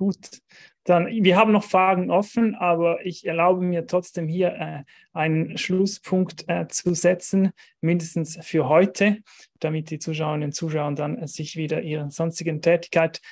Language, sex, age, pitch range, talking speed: German, male, 30-49, 155-185 Hz, 155 wpm